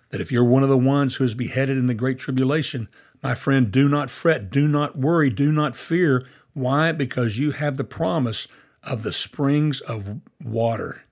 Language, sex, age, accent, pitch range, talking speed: English, male, 60-79, American, 110-140 Hz, 195 wpm